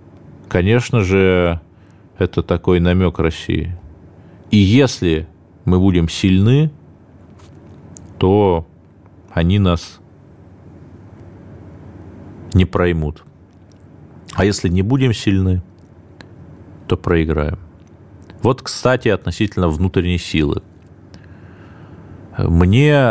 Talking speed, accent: 75 wpm, native